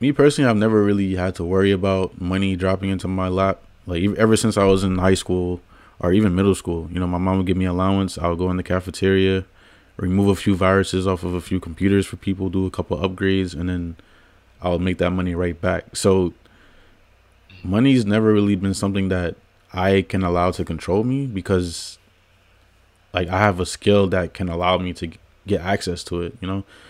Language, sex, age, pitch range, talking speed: English, male, 20-39, 90-100 Hz, 210 wpm